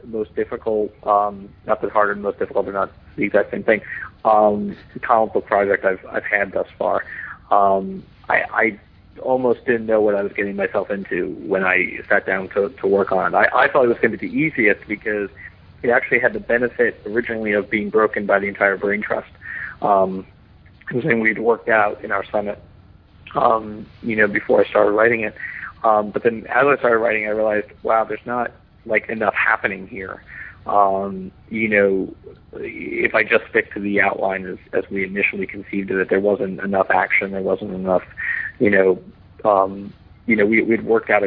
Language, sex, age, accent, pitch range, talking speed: English, male, 40-59, American, 95-115 Hz, 200 wpm